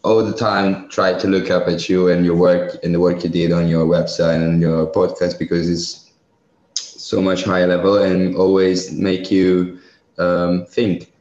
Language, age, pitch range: Italian, 20-39, 85-95 Hz